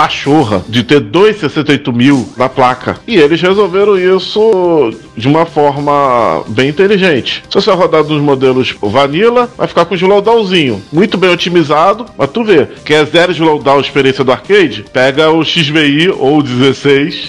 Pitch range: 130-170 Hz